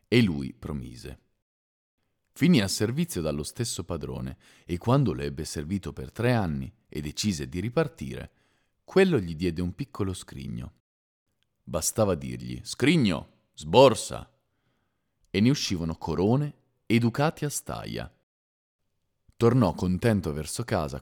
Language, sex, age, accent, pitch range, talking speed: Italian, male, 40-59, native, 75-105 Hz, 125 wpm